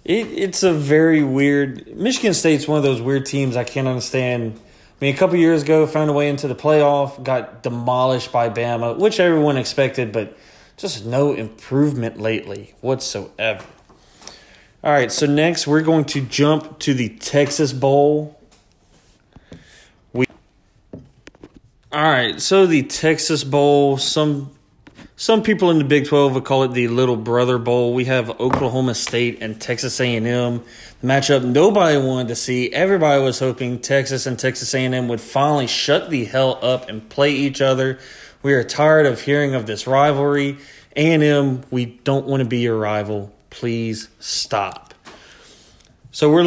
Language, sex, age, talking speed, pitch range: English, male, 20-39, 160 wpm, 125-145 Hz